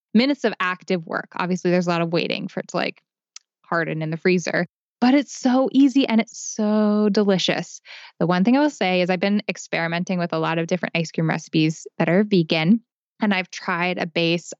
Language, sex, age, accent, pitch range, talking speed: English, female, 10-29, American, 170-205 Hz, 215 wpm